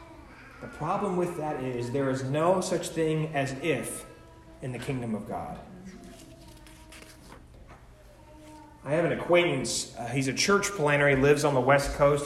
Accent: American